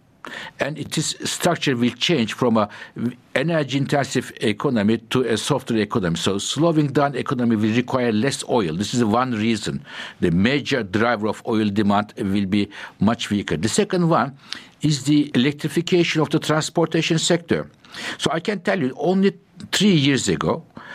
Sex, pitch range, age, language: male, 115-160 Hz, 60-79, English